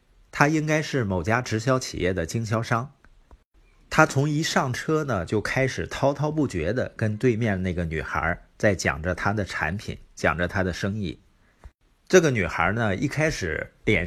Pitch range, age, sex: 90-135 Hz, 50-69, male